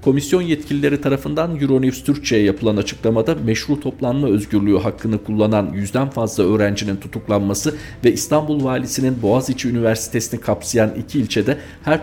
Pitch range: 105-135 Hz